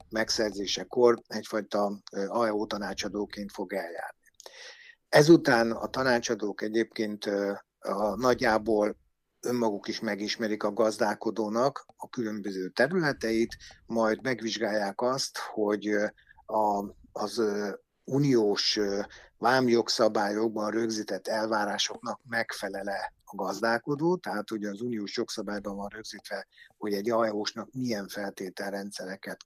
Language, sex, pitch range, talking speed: Hungarian, male, 105-125 Hz, 100 wpm